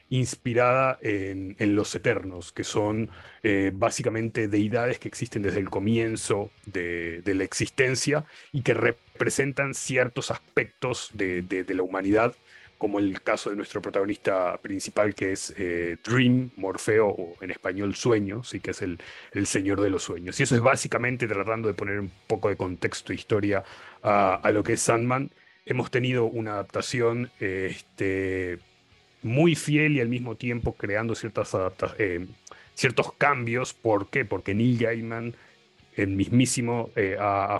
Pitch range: 100-120 Hz